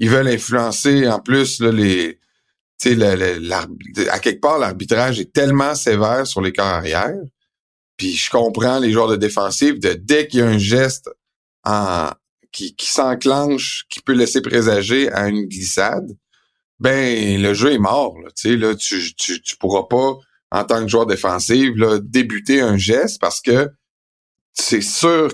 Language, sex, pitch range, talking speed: French, male, 105-135 Hz, 170 wpm